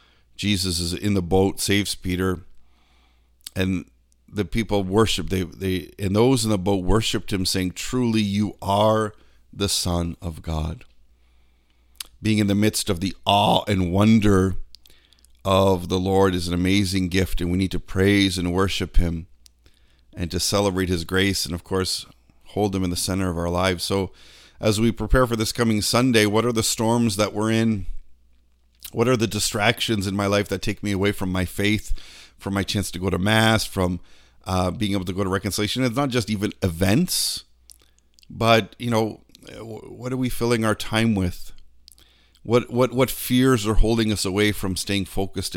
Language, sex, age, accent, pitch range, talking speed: English, male, 50-69, American, 85-105 Hz, 180 wpm